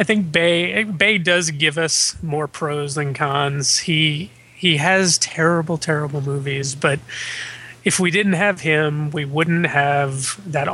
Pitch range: 140-165 Hz